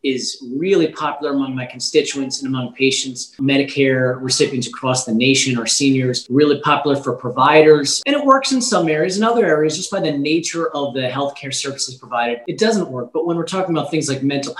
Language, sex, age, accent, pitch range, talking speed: English, male, 30-49, American, 135-160 Hz, 200 wpm